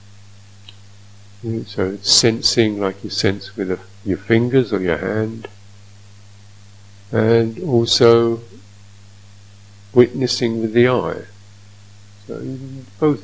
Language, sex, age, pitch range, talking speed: English, male, 50-69, 100-110 Hz, 95 wpm